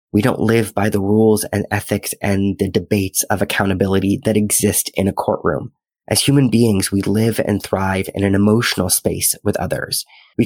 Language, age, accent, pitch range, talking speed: English, 20-39, American, 100-120 Hz, 185 wpm